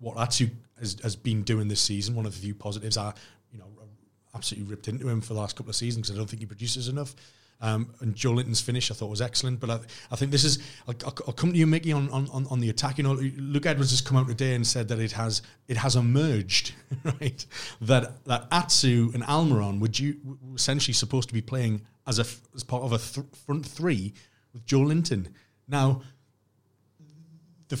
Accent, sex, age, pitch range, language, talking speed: British, male, 30-49, 110-135 Hz, English, 225 wpm